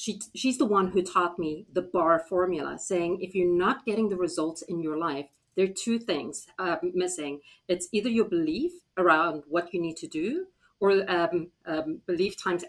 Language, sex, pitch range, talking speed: English, female, 170-215 Hz, 190 wpm